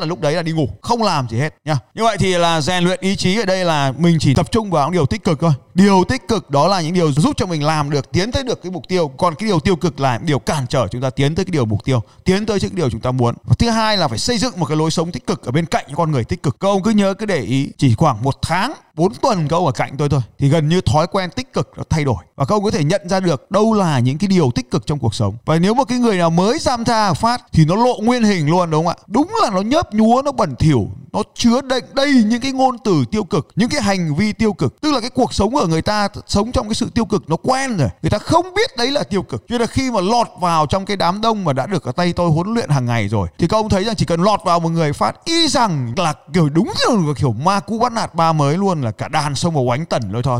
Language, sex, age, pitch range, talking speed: Vietnamese, male, 20-39, 145-215 Hz, 315 wpm